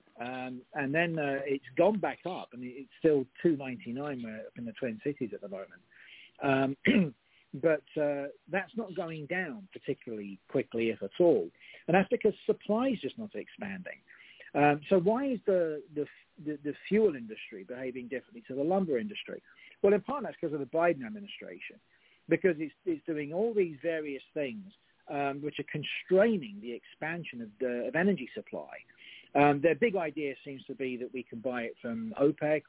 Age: 50-69